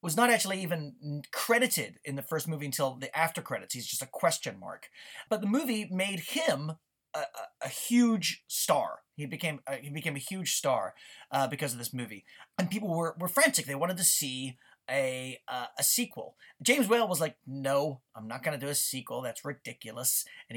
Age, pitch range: 30-49, 145-215 Hz